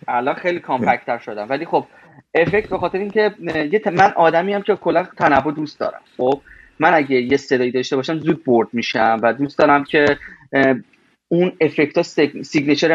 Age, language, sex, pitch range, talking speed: 30-49, Persian, male, 130-165 Hz, 165 wpm